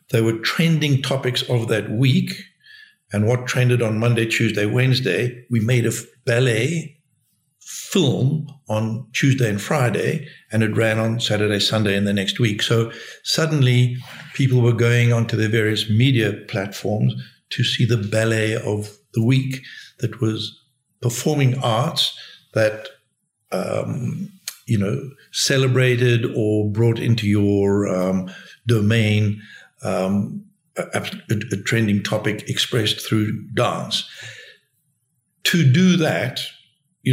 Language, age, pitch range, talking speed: English, 60-79, 110-130 Hz, 125 wpm